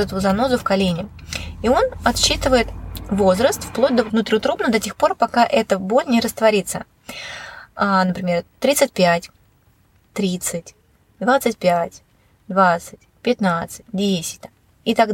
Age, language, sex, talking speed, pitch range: 20-39, Russian, female, 110 wpm, 185-230 Hz